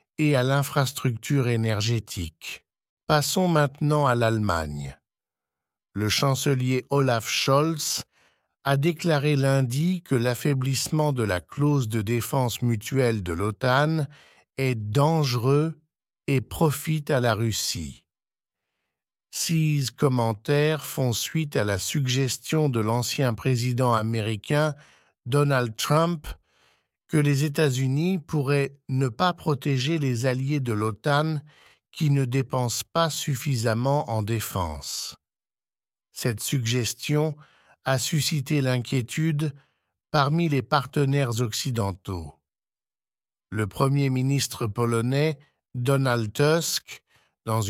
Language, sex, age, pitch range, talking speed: English, male, 60-79, 115-150 Hz, 100 wpm